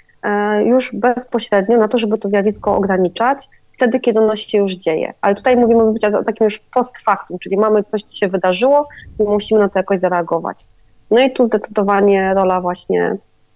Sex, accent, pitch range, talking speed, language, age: female, native, 195-225 Hz, 175 wpm, Polish, 30-49